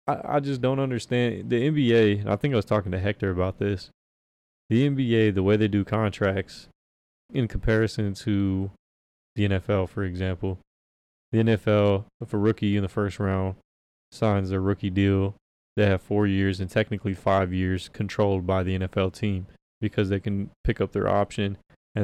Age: 20-39